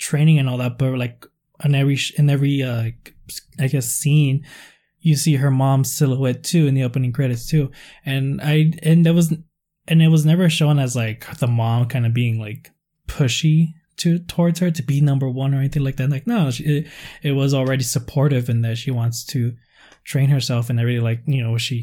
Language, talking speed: English, 215 wpm